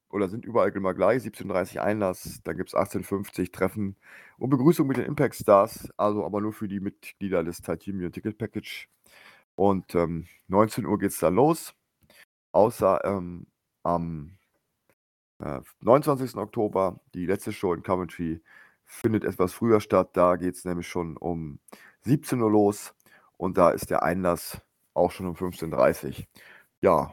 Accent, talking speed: German, 155 wpm